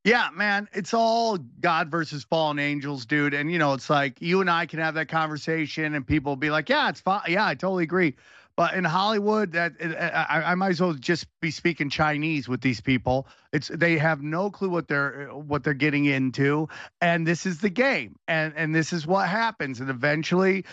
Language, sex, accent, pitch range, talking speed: English, male, American, 145-190 Hz, 210 wpm